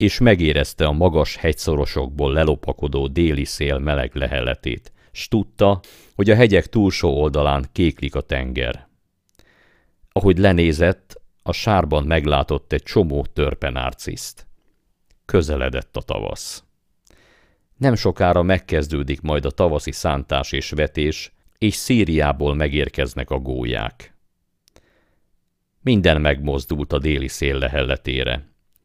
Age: 50-69